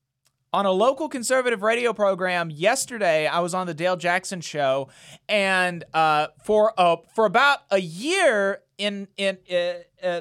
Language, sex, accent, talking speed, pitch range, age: English, male, American, 145 wpm, 130-175 Hz, 30-49